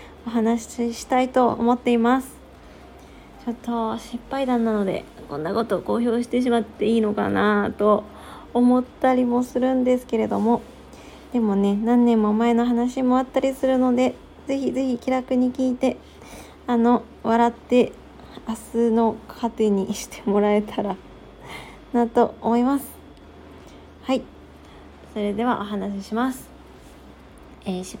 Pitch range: 220-250 Hz